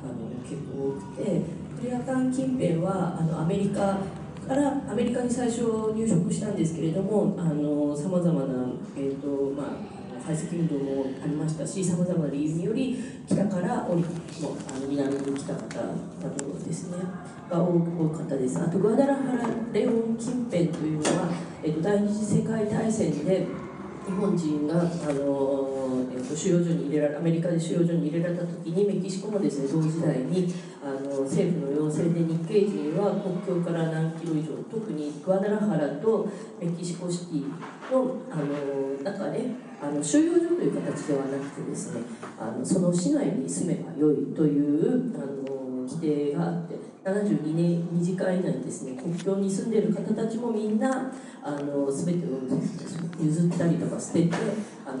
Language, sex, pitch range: English, female, 150-200 Hz